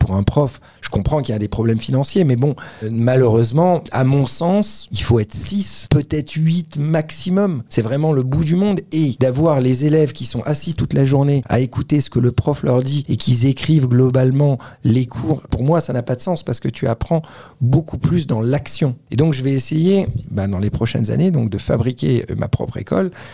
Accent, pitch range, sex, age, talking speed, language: French, 115-150 Hz, male, 40-59, 215 wpm, French